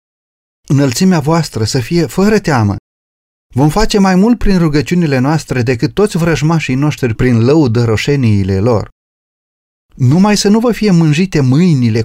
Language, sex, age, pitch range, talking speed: Romanian, male, 30-49, 110-170 Hz, 135 wpm